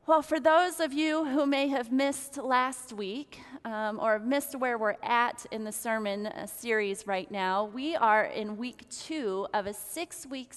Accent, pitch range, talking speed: American, 205-255 Hz, 175 wpm